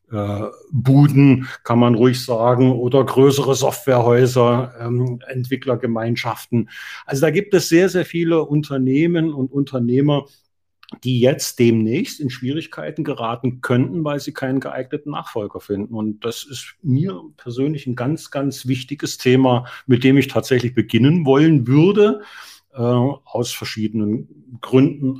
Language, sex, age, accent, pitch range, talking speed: German, male, 50-69, German, 120-150 Hz, 130 wpm